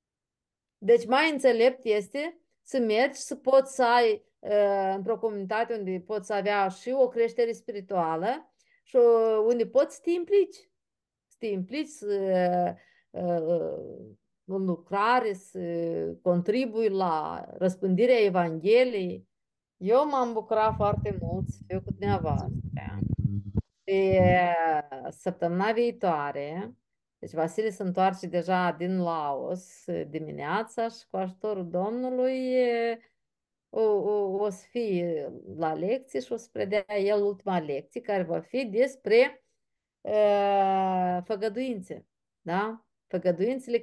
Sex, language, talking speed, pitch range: female, Romanian, 110 wpm, 180-240 Hz